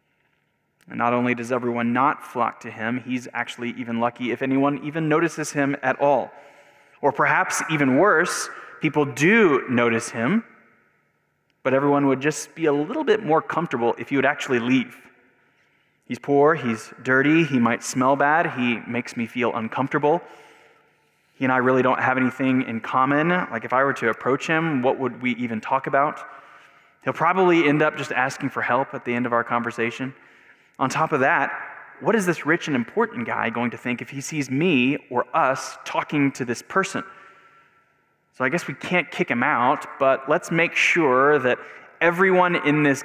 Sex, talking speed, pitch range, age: male, 185 wpm, 125-155 Hz, 20-39